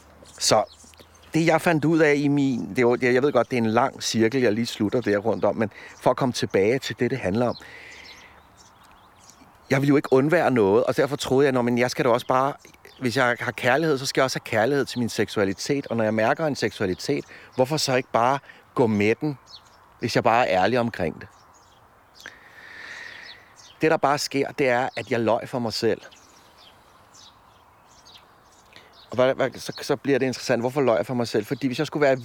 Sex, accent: male, native